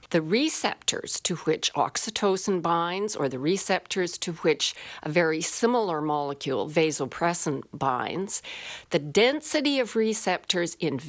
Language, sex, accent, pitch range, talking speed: English, female, American, 155-215 Hz, 120 wpm